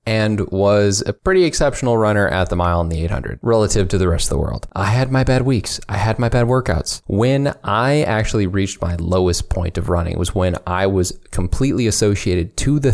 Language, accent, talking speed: English, American, 215 wpm